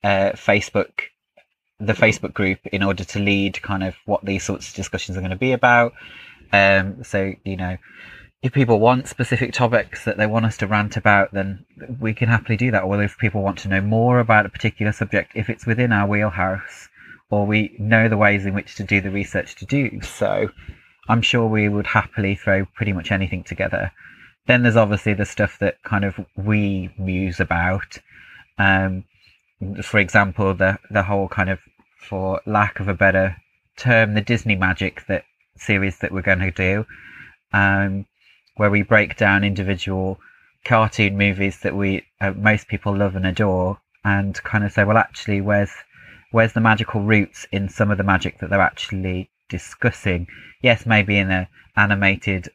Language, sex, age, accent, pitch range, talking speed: English, male, 30-49, British, 95-110 Hz, 180 wpm